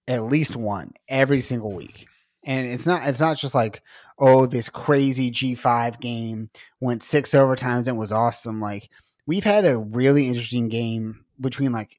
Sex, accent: male, American